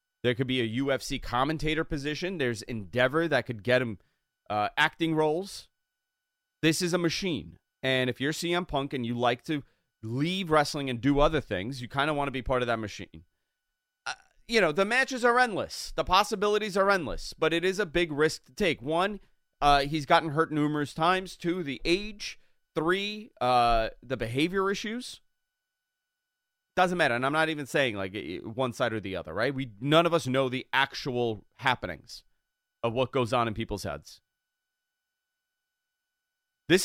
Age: 30-49